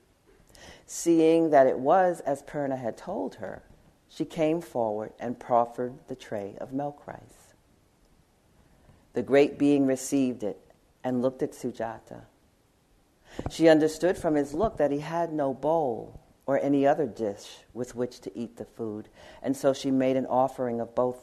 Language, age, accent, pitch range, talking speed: English, 50-69, American, 115-145 Hz, 160 wpm